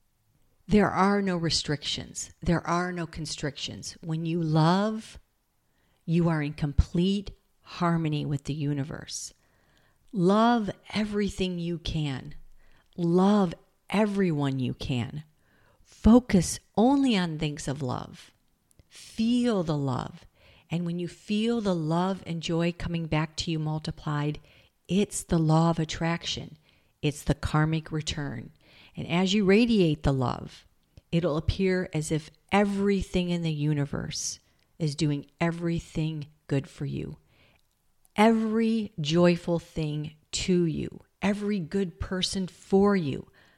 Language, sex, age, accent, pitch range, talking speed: English, female, 50-69, American, 145-185 Hz, 120 wpm